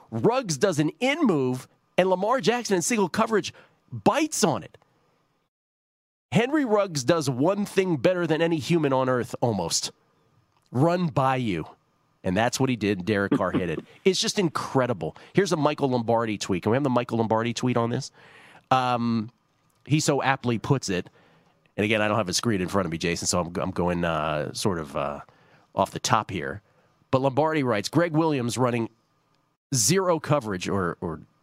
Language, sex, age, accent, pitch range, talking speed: English, male, 40-59, American, 110-155 Hz, 180 wpm